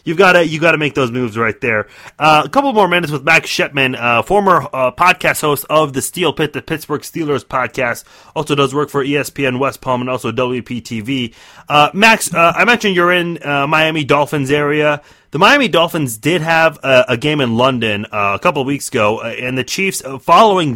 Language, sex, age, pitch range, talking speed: English, male, 30-49, 130-165 Hz, 200 wpm